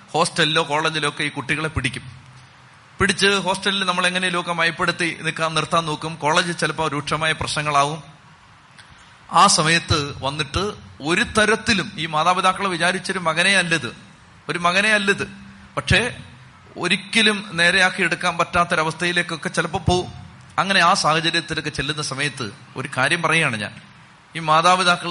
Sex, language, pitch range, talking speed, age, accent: male, Malayalam, 140-180 Hz, 115 wpm, 30-49, native